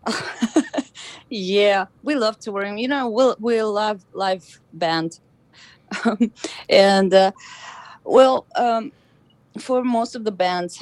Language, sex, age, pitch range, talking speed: English, female, 20-39, 165-220 Hz, 110 wpm